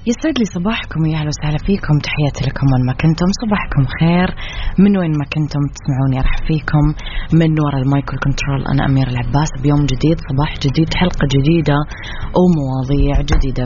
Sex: female